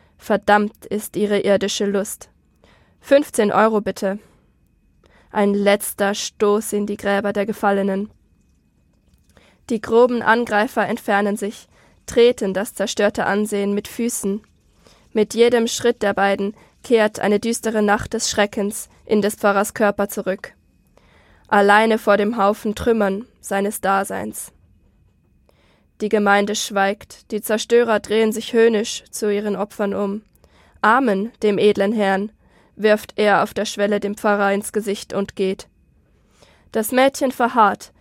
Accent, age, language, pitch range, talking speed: German, 20-39, German, 200-220 Hz, 125 wpm